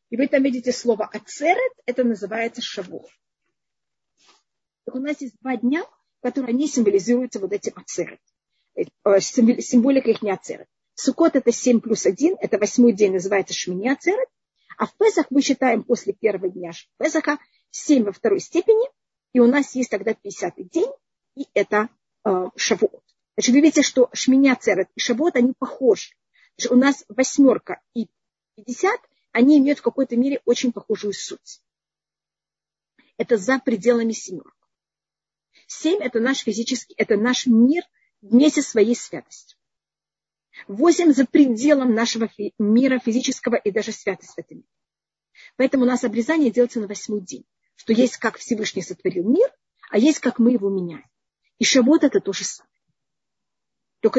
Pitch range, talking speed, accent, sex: 220-280 Hz, 150 wpm, native, female